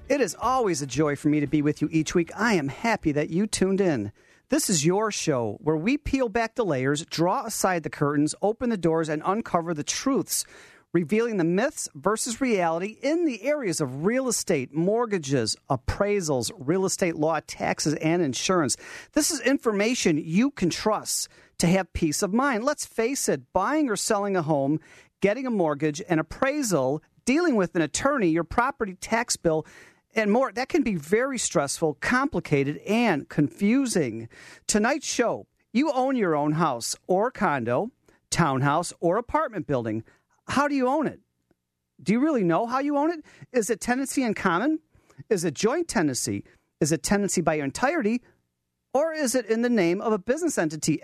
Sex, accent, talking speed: male, American, 180 wpm